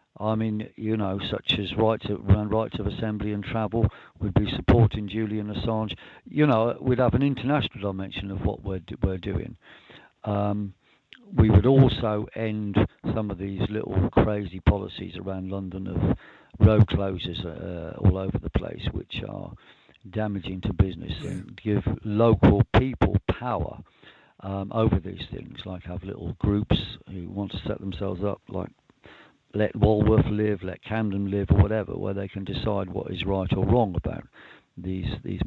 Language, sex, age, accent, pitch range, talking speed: English, male, 50-69, British, 95-110 Hz, 160 wpm